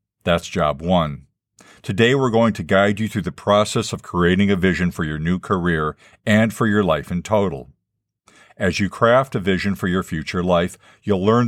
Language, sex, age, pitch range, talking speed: English, male, 50-69, 90-115 Hz, 195 wpm